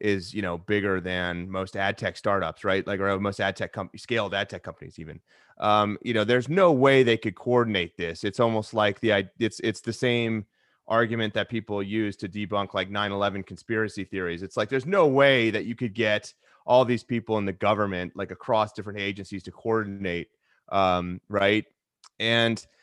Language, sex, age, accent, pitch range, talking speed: English, male, 30-49, American, 100-120 Hz, 190 wpm